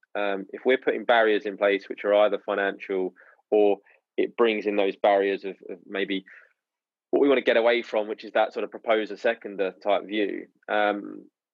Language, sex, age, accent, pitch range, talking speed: English, male, 20-39, British, 95-120 Hz, 190 wpm